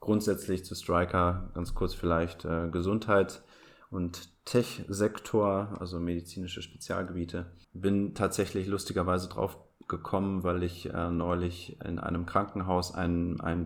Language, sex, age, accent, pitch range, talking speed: German, male, 30-49, German, 85-95 Hz, 120 wpm